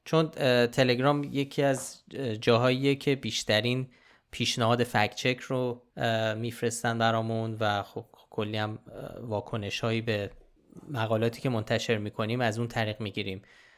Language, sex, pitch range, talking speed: Persian, male, 115-145 Hz, 120 wpm